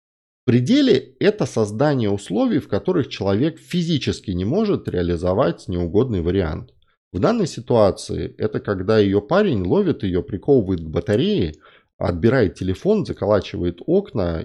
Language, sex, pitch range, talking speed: Russian, male, 90-125 Hz, 125 wpm